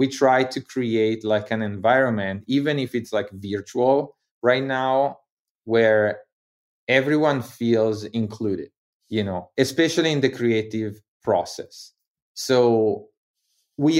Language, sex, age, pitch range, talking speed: English, male, 30-49, 105-125 Hz, 115 wpm